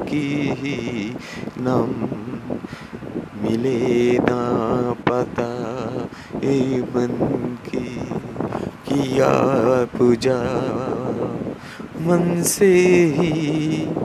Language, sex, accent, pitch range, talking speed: Bengali, male, native, 120-155 Hz, 55 wpm